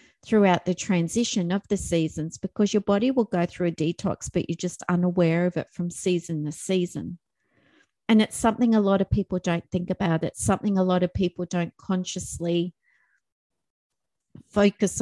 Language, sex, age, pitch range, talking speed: English, female, 40-59, 170-195 Hz, 170 wpm